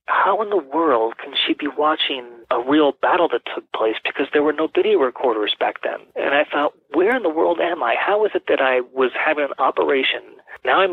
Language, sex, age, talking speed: English, male, 30-49, 230 wpm